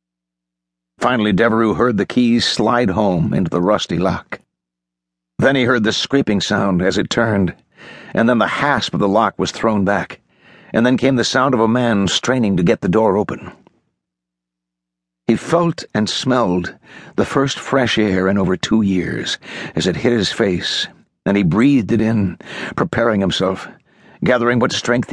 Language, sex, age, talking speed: English, male, 60-79, 170 wpm